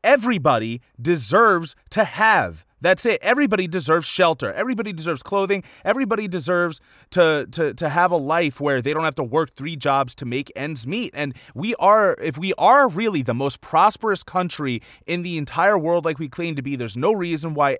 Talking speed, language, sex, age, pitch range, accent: 190 wpm, English, male, 30-49, 140-190 Hz, American